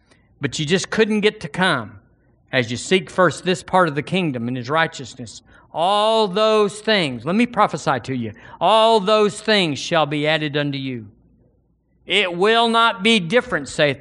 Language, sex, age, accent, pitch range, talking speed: English, male, 50-69, American, 125-190 Hz, 175 wpm